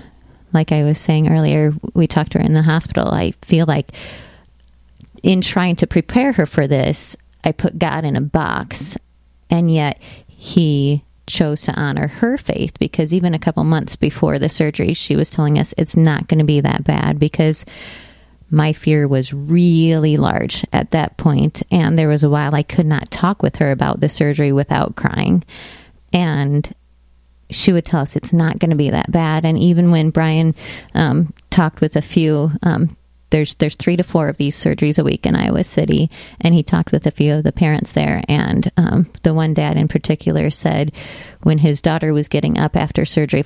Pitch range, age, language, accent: 145-165 Hz, 30-49, English, American